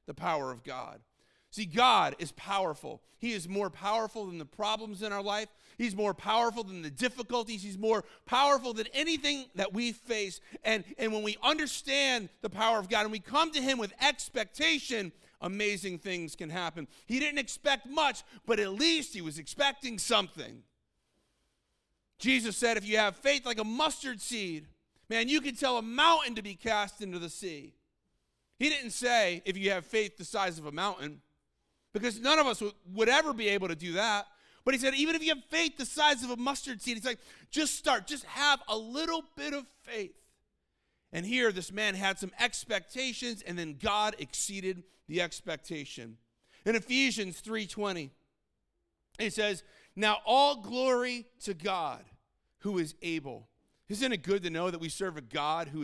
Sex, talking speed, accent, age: male, 185 wpm, American, 40-59